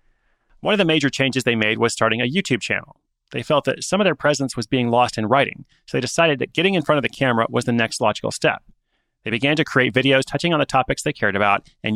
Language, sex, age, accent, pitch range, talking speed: English, male, 30-49, American, 115-150 Hz, 260 wpm